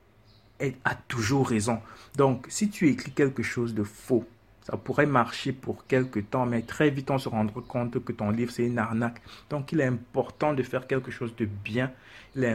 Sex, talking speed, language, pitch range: male, 205 wpm, French, 110-135 Hz